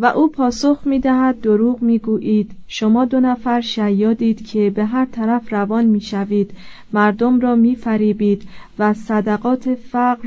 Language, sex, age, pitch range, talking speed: Persian, female, 40-59, 210-250 Hz, 135 wpm